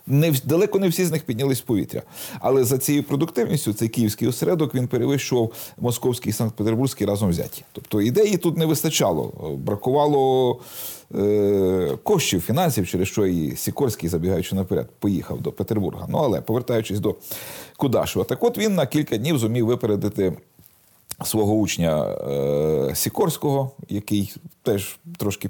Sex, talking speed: male, 145 wpm